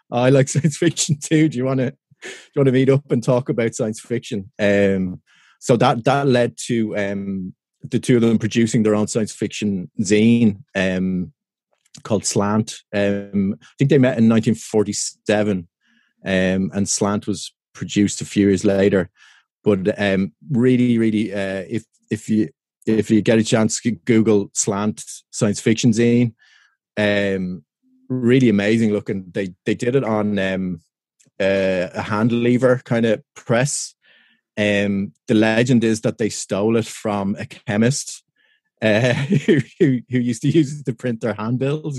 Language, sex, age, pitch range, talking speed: English, male, 30-49, 105-125 Hz, 160 wpm